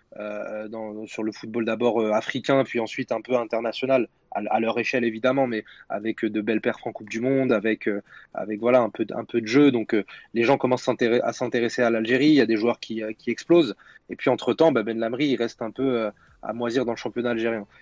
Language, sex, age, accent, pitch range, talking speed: French, male, 20-39, French, 115-130 Hz, 245 wpm